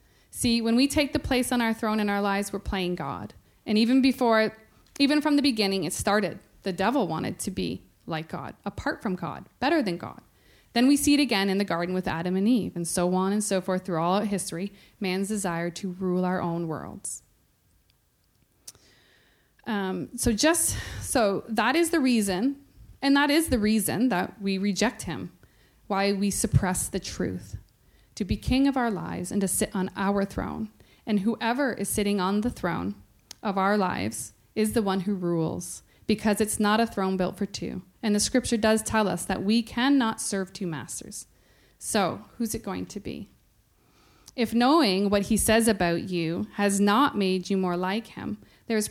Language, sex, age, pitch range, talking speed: English, female, 20-39, 185-230 Hz, 190 wpm